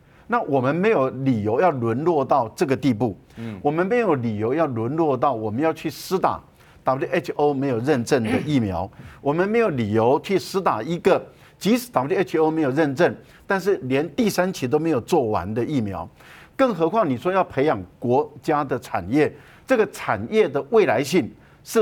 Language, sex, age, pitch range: Chinese, male, 50-69, 125-180 Hz